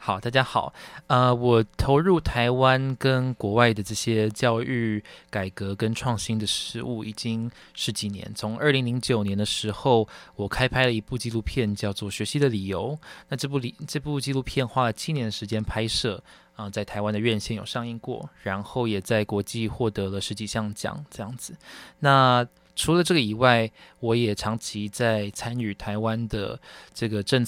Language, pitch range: Chinese, 105-130 Hz